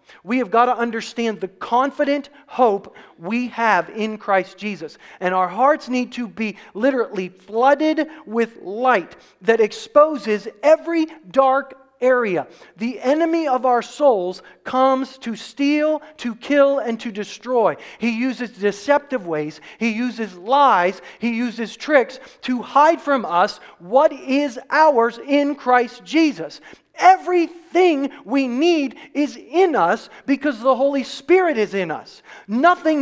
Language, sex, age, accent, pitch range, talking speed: English, male, 40-59, American, 225-300 Hz, 135 wpm